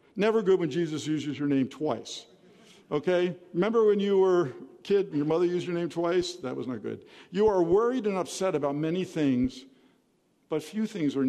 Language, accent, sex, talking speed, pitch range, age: English, American, male, 200 wpm, 145-220 Hz, 50-69